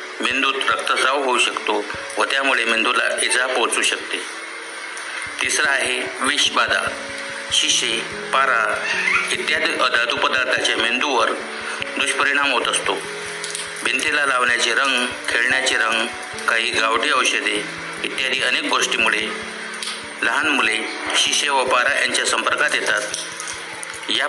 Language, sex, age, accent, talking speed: Marathi, male, 50-69, native, 90 wpm